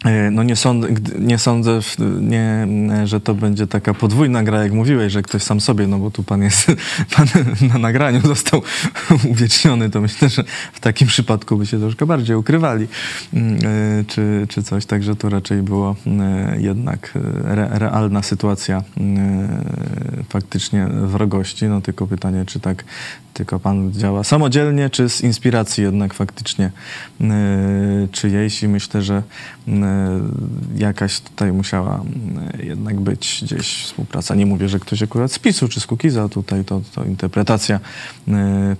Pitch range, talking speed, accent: 100-115 Hz, 145 wpm, native